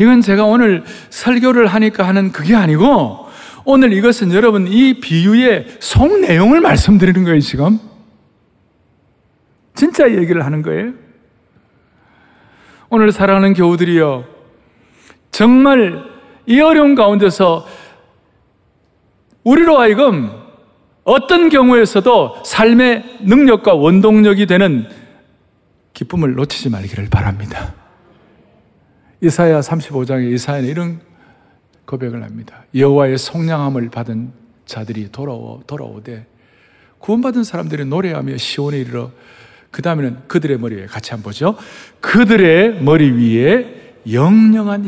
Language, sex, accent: Korean, male, native